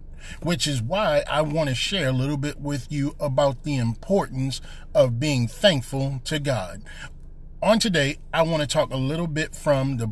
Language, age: English, 30-49